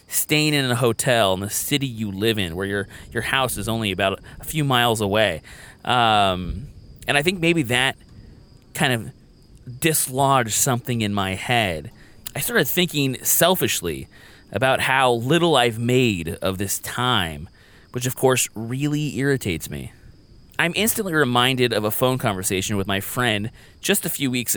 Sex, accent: male, American